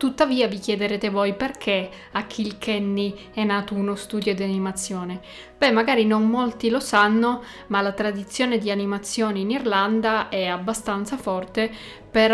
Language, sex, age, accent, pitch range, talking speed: Italian, female, 20-39, native, 200-225 Hz, 145 wpm